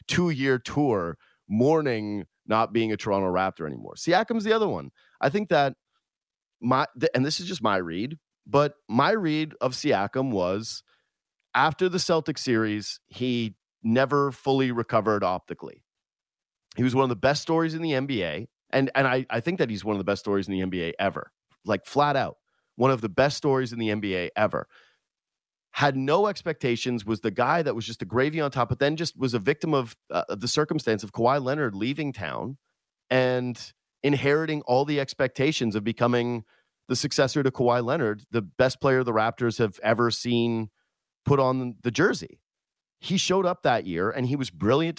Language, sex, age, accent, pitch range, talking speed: English, male, 30-49, American, 110-140 Hz, 180 wpm